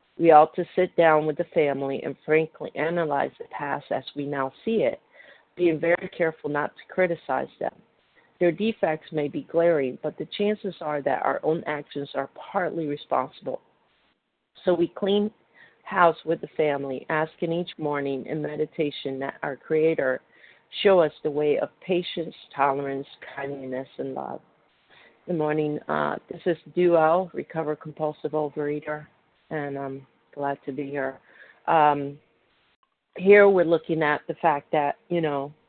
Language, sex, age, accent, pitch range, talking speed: English, female, 50-69, American, 145-170 Hz, 155 wpm